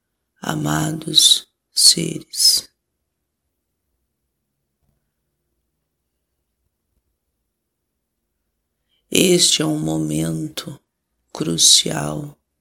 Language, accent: Portuguese, Brazilian